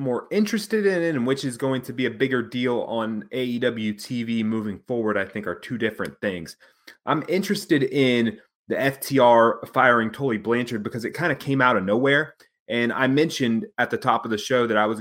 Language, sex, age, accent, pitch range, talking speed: English, male, 30-49, American, 110-135 Hz, 210 wpm